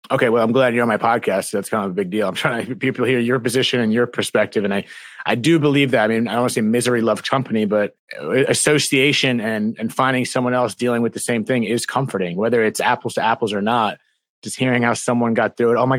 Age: 30-49